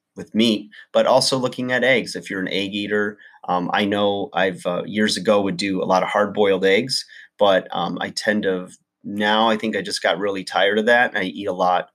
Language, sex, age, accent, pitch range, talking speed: English, male, 30-49, American, 95-110 Hz, 235 wpm